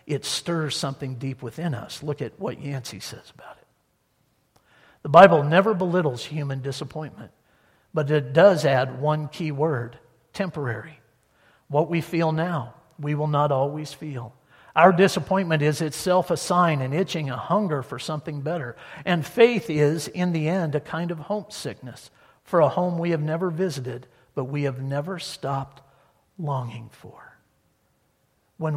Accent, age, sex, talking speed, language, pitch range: American, 50-69, male, 155 wpm, English, 135-170 Hz